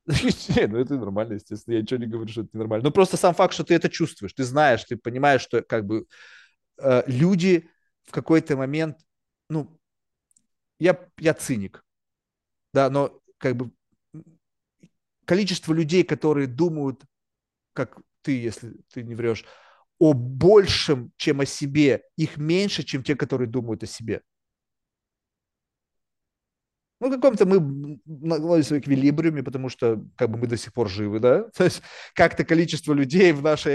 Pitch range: 120-160 Hz